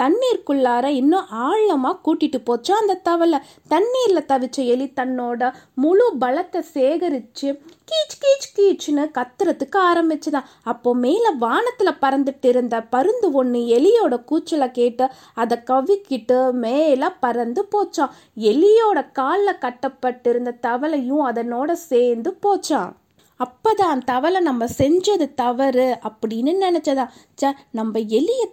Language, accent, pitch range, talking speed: Tamil, native, 245-330 Hz, 105 wpm